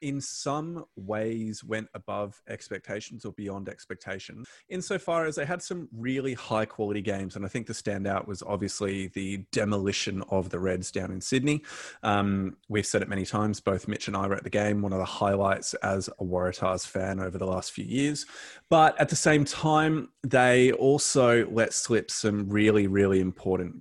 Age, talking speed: 20-39, 185 wpm